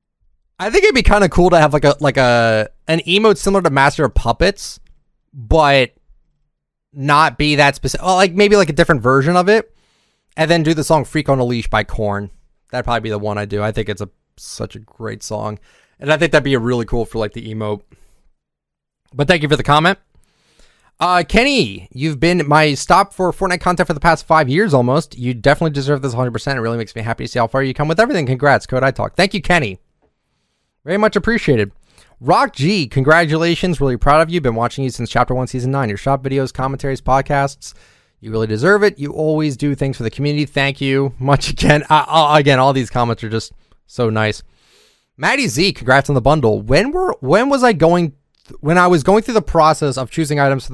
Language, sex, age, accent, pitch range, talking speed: English, male, 20-39, American, 125-170 Hz, 220 wpm